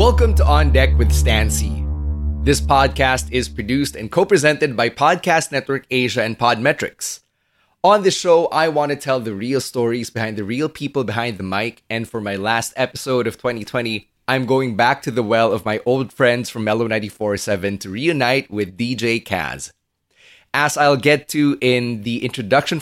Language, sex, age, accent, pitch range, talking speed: English, male, 20-39, Filipino, 105-130 Hz, 180 wpm